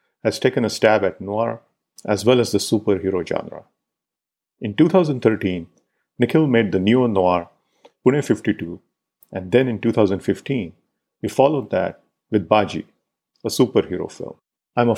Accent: Indian